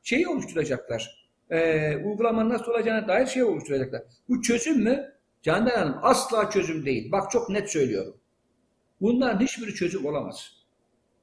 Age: 60-79